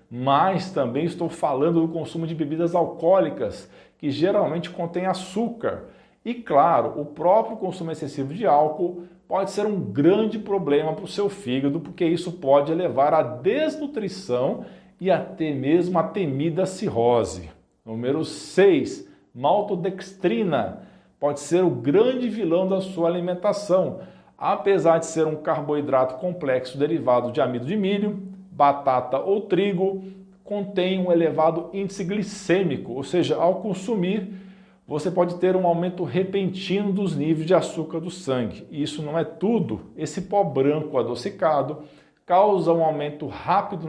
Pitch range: 155-195 Hz